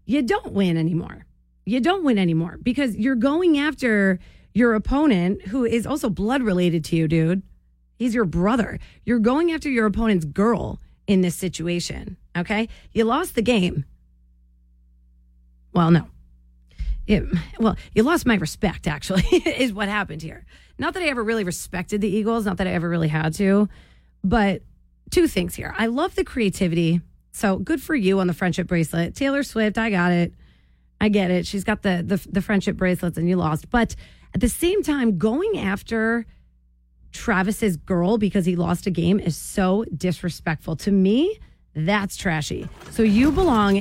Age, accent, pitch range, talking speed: 30-49, American, 170-230 Hz, 170 wpm